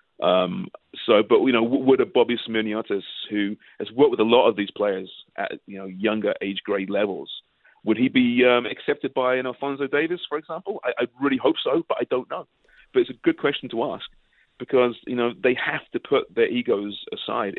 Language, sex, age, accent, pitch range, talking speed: English, male, 40-59, British, 100-135 Hz, 210 wpm